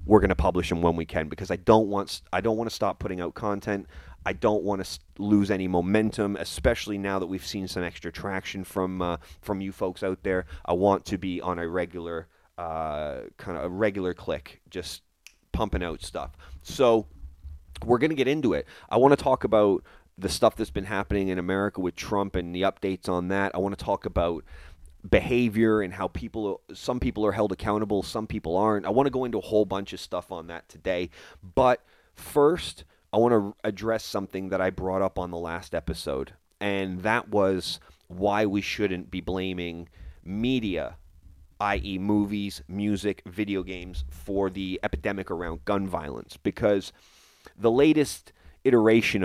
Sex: male